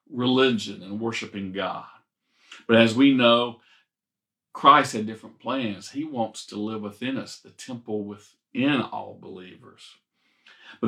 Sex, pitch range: male, 105-140 Hz